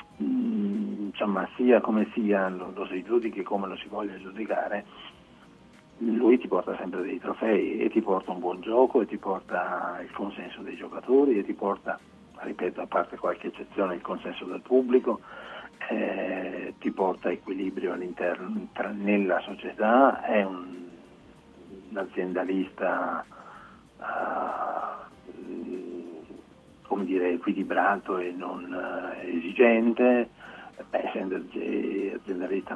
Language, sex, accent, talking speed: Italian, male, native, 115 wpm